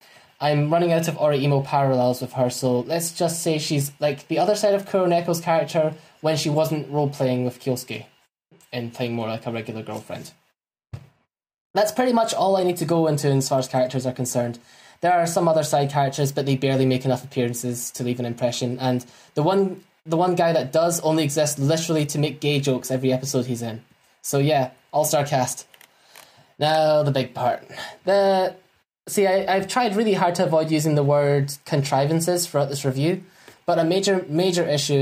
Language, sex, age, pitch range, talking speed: English, male, 10-29, 135-170 Hz, 190 wpm